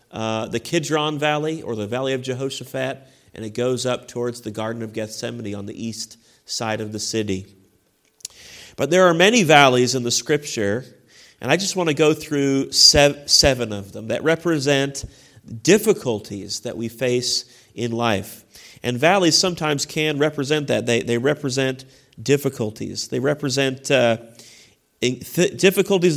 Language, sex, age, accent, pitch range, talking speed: English, male, 40-59, American, 115-150 Hz, 150 wpm